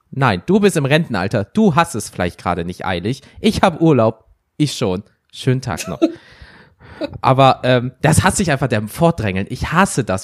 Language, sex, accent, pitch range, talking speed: German, male, German, 115-155 Hz, 180 wpm